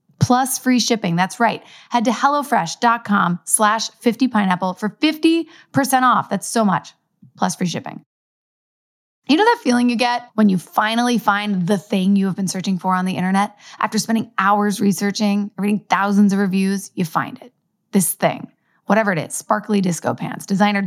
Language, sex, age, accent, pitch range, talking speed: English, female, 20-39, American, 185-250 Hz, 170 wpm